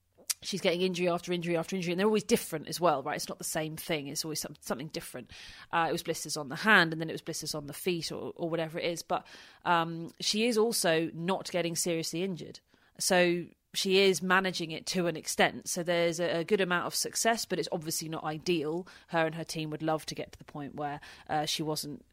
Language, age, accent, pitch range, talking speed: English, 30-49, British, 160-185 Hz, 240 wpm